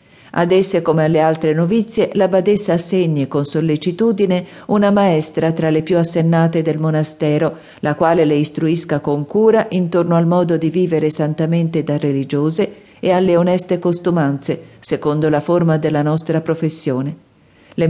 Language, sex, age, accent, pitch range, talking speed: Italian, female, 50-69, native, 155-180 Hz, 145 wpm